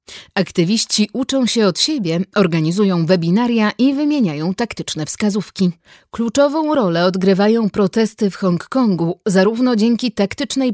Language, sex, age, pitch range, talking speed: Polish, female, 30-49, 185-245 Hz, 110 wpm